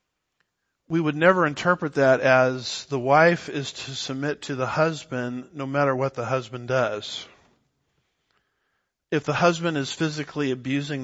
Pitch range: 125-155 Hz